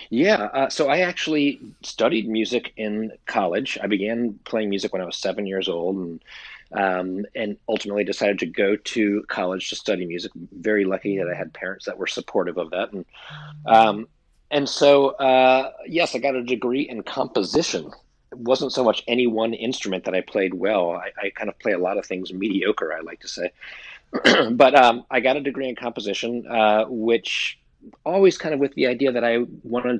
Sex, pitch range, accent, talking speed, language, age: male, 105-130 Hz, American, 195 wpm, English, 40-59